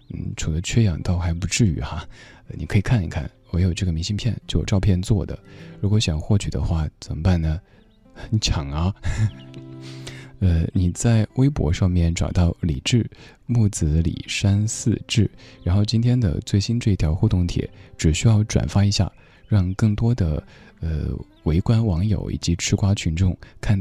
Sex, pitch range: male, 80-110 Hz